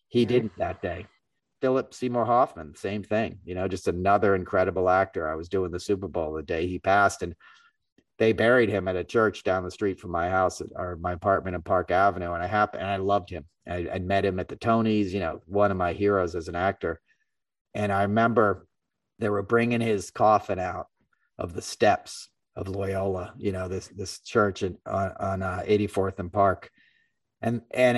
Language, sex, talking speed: English, male, 200 wpm